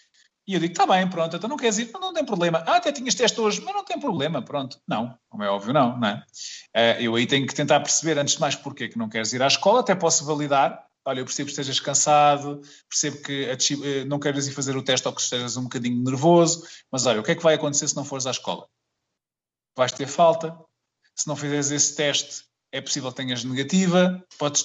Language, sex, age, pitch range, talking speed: Portuguese, male, 20-39, 130-165 Hz, 235 wpm